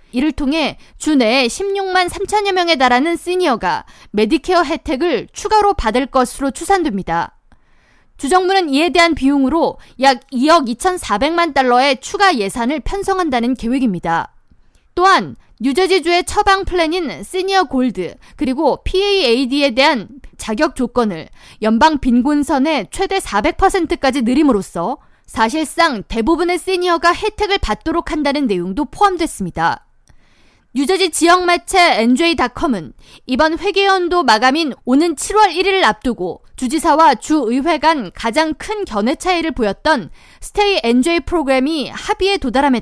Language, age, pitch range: Korean, 20-39, 245-350 Hz